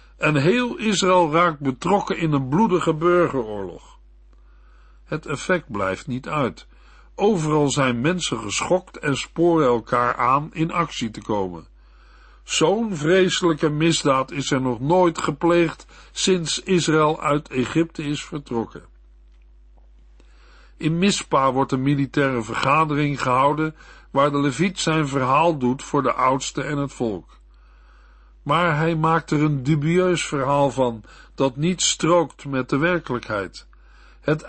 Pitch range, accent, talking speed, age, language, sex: 125-165 Hz, Dutch, 130 wpm, 60-79, Dutch, male